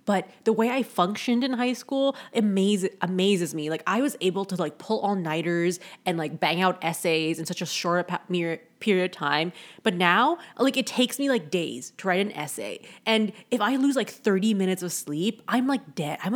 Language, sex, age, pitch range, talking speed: English, female, 20-39, 170-215 Hz, 200 wpm